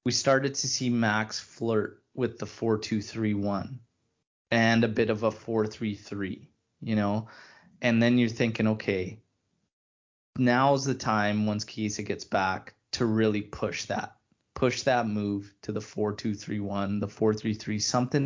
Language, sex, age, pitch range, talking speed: English, male, 20-39, 105-115 Hz, 170 wpm